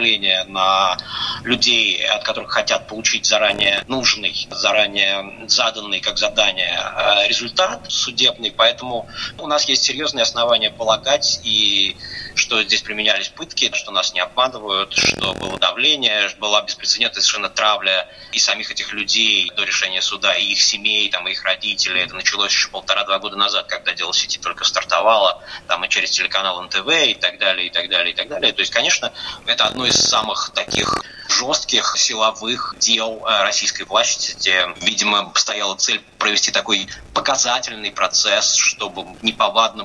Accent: native